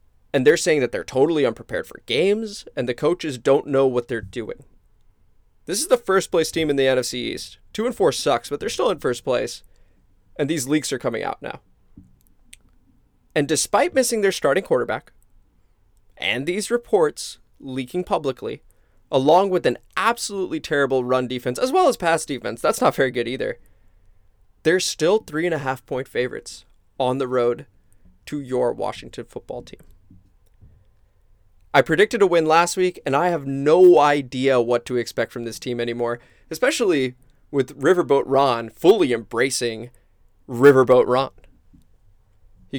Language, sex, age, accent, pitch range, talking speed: English, male, 20-39, American, 105-155 Hz, 160 wpm